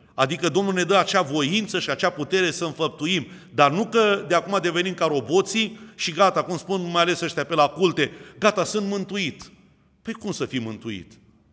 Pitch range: 150-195 Hz